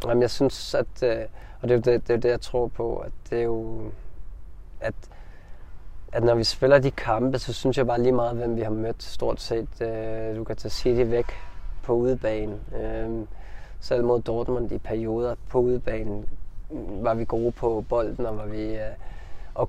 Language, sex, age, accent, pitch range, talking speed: Danish, male, 20-39, native, 105-120 Hz, 185 wpm